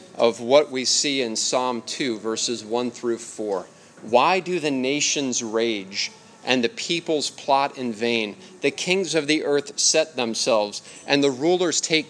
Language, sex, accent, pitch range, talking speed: English, male, American, 115-155 Hz, 165 wpm